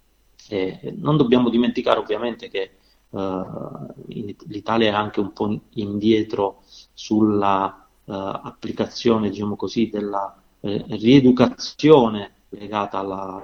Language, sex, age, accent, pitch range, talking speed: Italian, male, 30-49, native, 100-115 Hz, 105 wpm